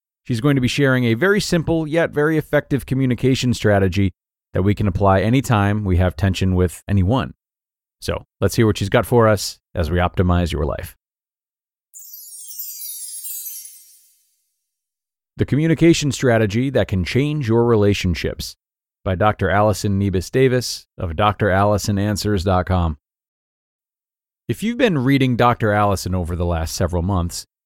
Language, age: English, 40-59